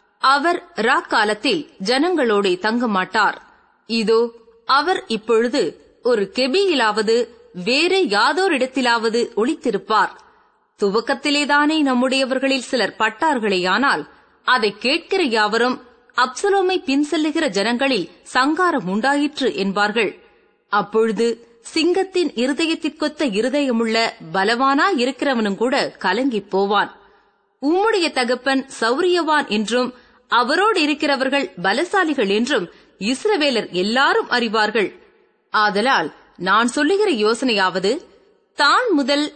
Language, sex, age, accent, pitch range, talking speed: Tamil, female, 30-49, native, 230-335 Hz, 75 wpm